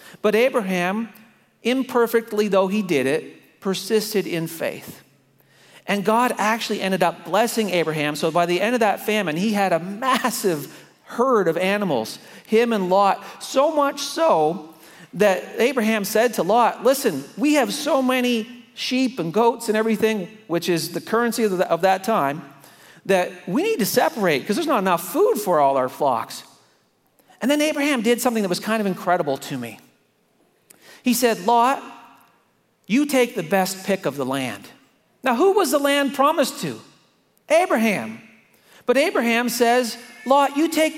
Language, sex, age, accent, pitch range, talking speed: English, male, 40-59, American, 190-245 Hz, 165 wpm